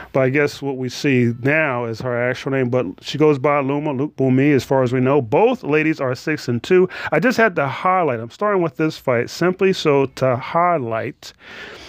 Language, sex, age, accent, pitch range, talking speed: English, male, 30-49, American, 130-180 Hz, 210 wpm